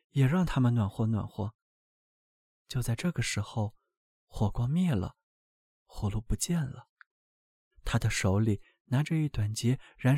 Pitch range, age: 110-165 Hz, 20-39